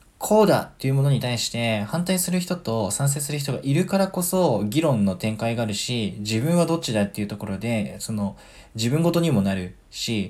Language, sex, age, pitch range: Japanese, male, 20-39, 110-150 Hz